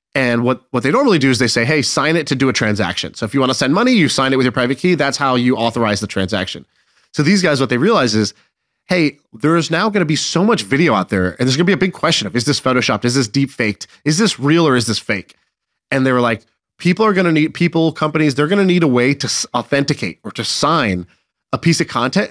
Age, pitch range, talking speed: 30-49, 115-155 Hz, 280 wpm